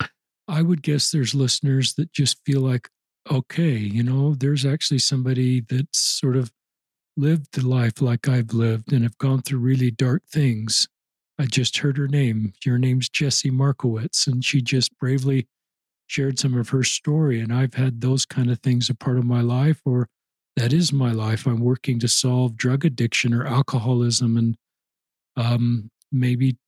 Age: 40-59